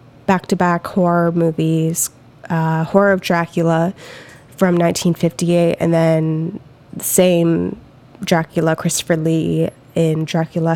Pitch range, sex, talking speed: 155-180 Hz, female, 110 wpm